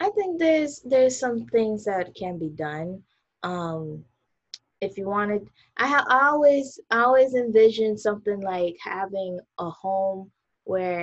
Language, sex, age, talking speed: English, female, 20-39, 135 wpm